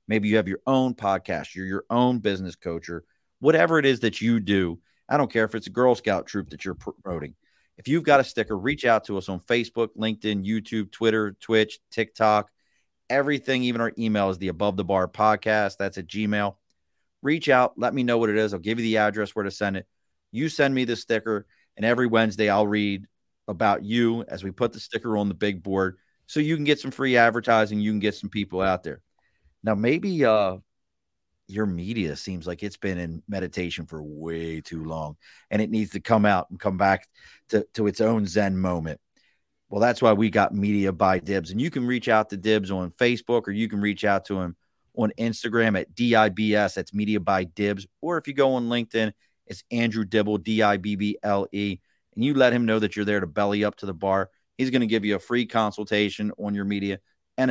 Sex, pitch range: male, 95-115 Hz